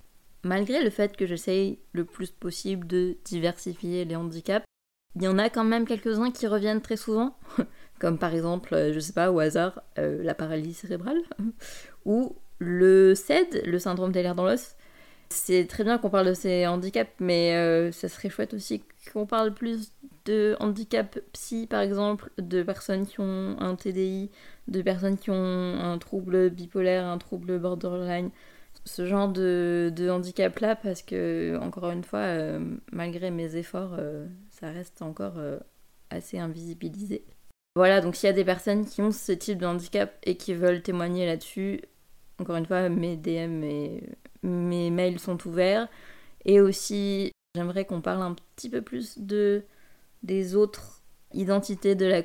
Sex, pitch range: female, 175-205 Hz